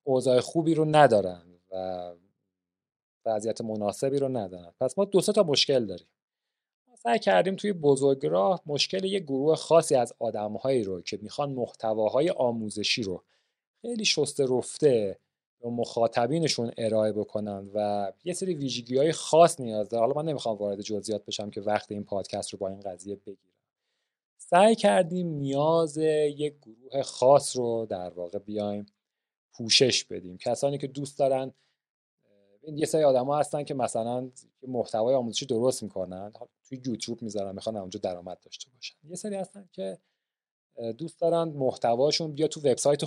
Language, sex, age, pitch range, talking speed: Persian, male, 30-49, 105-150 Hz, 150 wpm